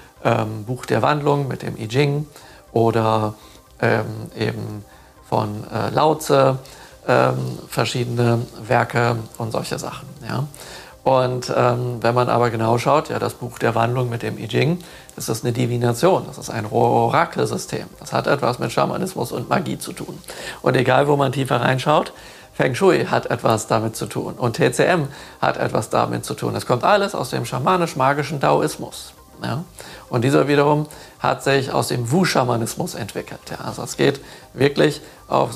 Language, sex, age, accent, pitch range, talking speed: German, male, 50-69, German, 115-135 Hz, 160 wpm